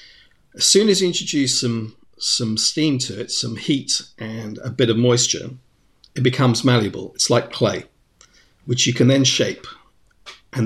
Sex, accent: male, British